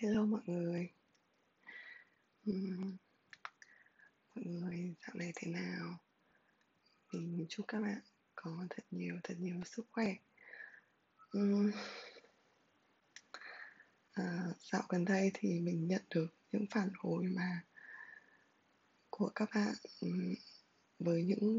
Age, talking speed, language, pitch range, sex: 20-39, 100 wpm, Vietnamese, 180-225 Hz, female